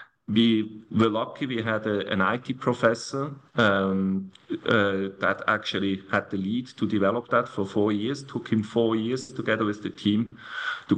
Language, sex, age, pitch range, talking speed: English, male, 40-59, 105-125 Hz, 165 wpm